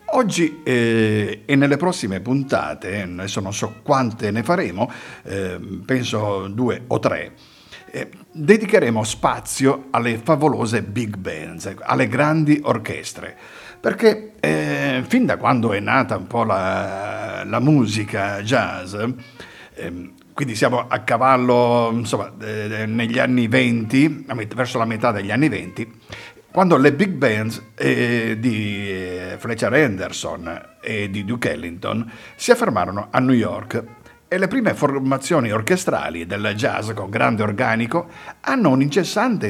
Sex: male